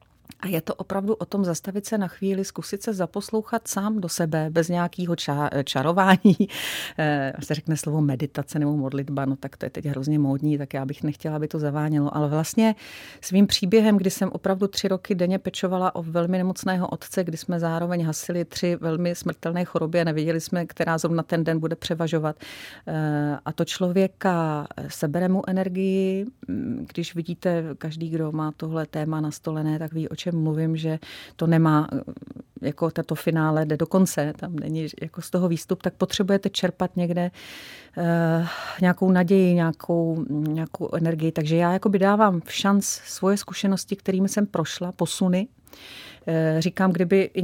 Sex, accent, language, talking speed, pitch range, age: female, native, Czech, 165 wpm, 160-195 Hz, 40-59